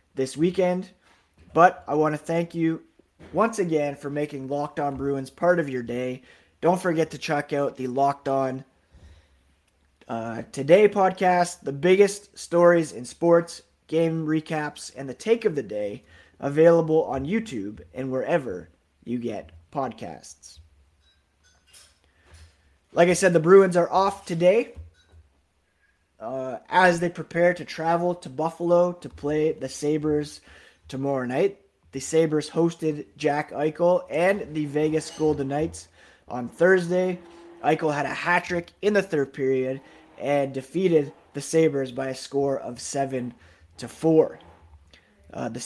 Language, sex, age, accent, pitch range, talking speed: English, male, 20-39, American, 130-170 Hz, 140 wpm